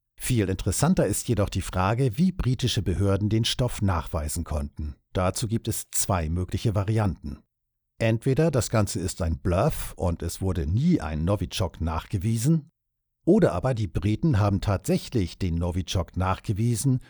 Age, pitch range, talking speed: 50-69, 90-120 Hz, 145 wpm